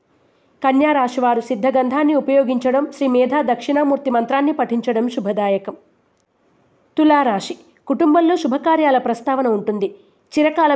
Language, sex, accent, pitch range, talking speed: Telugu, female, native, 235-285 Hz, 85 wpm